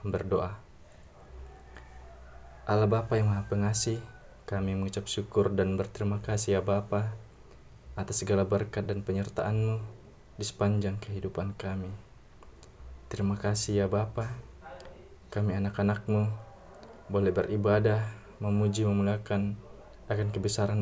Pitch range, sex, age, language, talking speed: 100-110 Hz, male, 20-39, Indonesian, 100 wpm